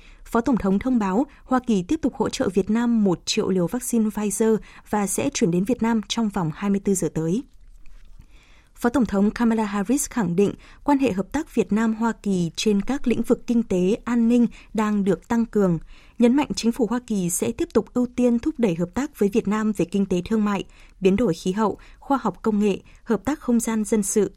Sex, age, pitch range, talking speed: female, 20-39, 195-240 Hz, 225 wpm